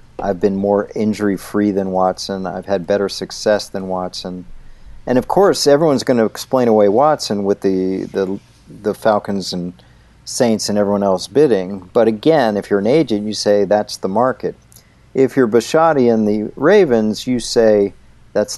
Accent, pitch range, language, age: American, 95-110 Hz, English, 50-69